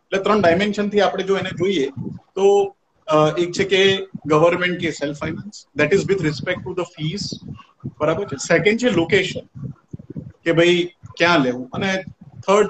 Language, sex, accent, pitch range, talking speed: Gujarati, male, native, 155-185 Hz, 90 wpm